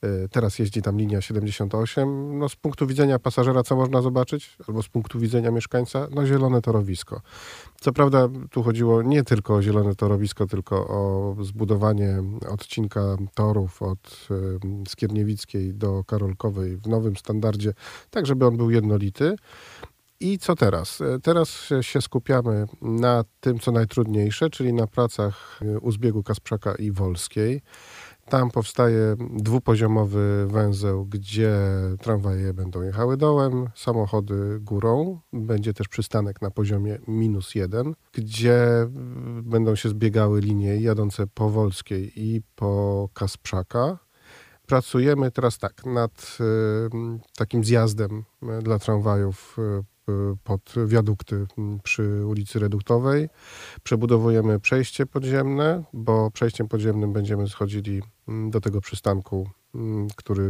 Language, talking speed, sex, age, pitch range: Polish, 120 wpm, male, 40-59, 100-120 Hz